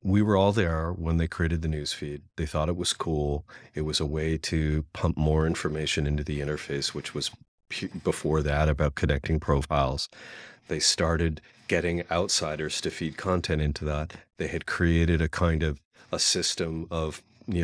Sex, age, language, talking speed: male, 40-59, English, 180 wpm